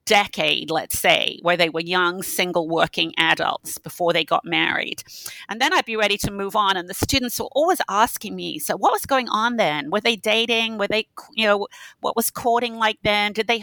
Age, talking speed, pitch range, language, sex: 40-59, 215 wpm, 175-230 Hz, English, female